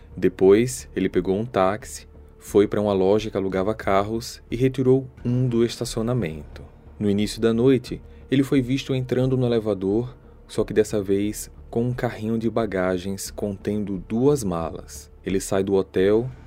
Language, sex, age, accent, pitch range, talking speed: Portuguese, male, 20-39, Brazilian, 95-125 Hz, 155 wpm